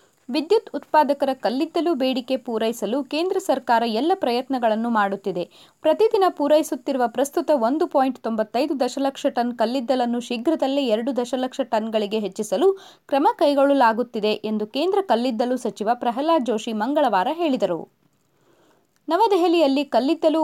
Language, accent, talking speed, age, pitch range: Kannada, native, 100 wpm, 30-49, 220-300 Hz